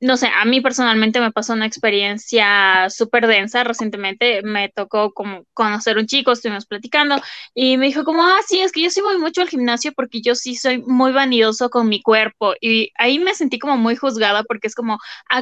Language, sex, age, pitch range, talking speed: Spanish, female, 10-29, 215-250 Hz, 210 wpm